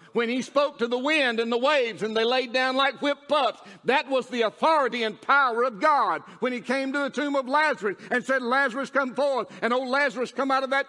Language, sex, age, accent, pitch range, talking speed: English, male, 60-79, American, 235-285 Hz, 240 wpm